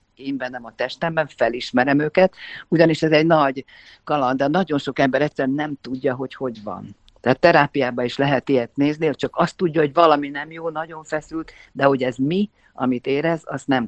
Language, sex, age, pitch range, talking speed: Hungarian, female, 50-69, 125-155 Hz, 190 wpm